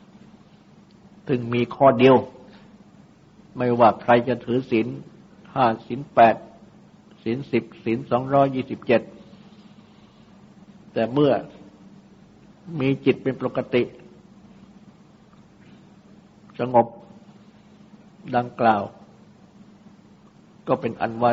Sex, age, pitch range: male, 60-79, 125-205 Hz